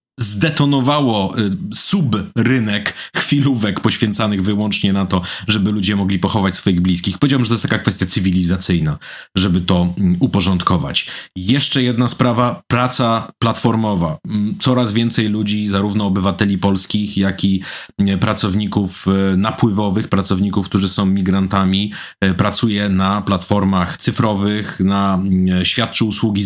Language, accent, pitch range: Polish, native, 95-115 Hz